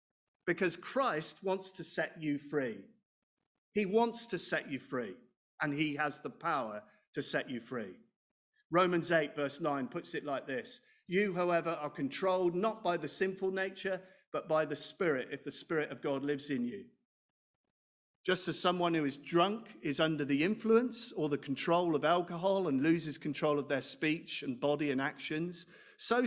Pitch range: 145-185 Hz